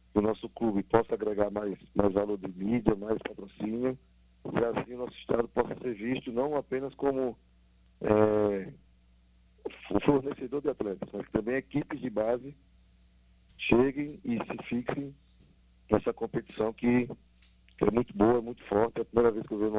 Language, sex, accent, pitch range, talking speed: Portuguese, male, Brazilian, 95-120 Hz, 160 wpm